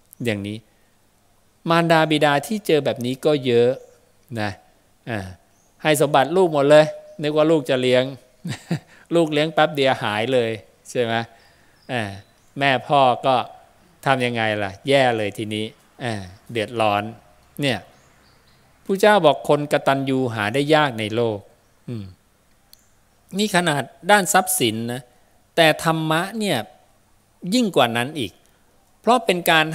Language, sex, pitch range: English, male, 110-155 Hz